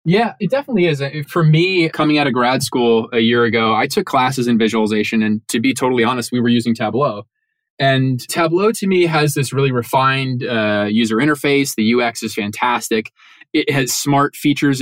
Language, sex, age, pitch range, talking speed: English, male, 20-39, 120-150 Hz, 190 wpm